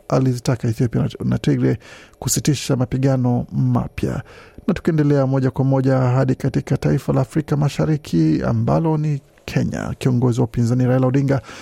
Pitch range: 120-155 Hz